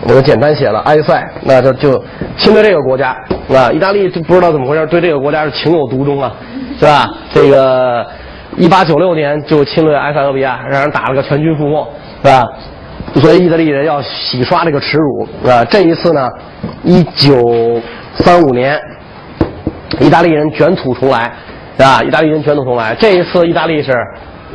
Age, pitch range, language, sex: 30-49, 125-160 Hz, English, male